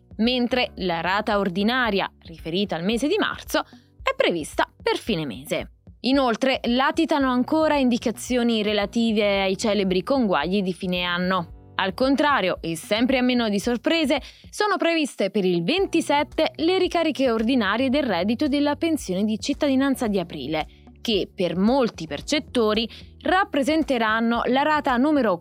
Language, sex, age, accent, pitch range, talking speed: Italian, female, 20-39, native, 205-310 Hz, 135 wpm